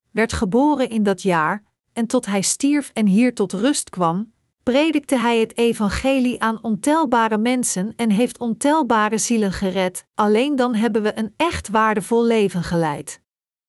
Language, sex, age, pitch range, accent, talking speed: Dutch, female, 40-59, 200-255 Hz, Dutch, 155 wpm